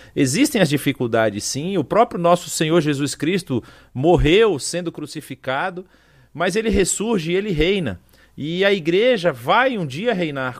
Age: 40-59